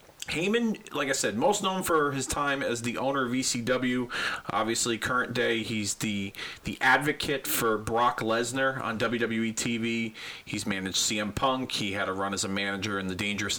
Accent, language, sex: American, English, male